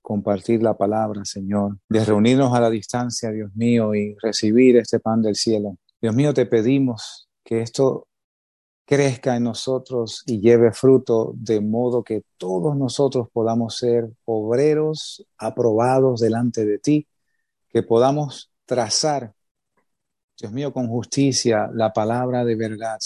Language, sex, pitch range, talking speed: English, male, 110-130 Hz, 135 wpm